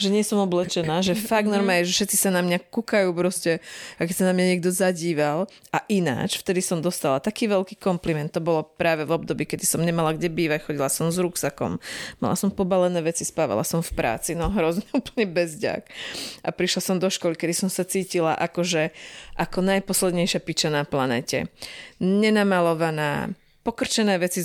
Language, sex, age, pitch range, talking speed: Slovak, female, 30-49, 160-195 Hz, 185 wpm